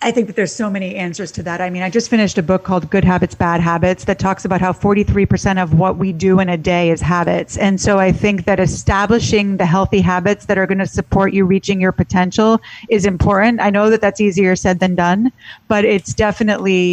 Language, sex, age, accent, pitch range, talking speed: English, female, 40-59, American, 190-220 Hz, 235 wpm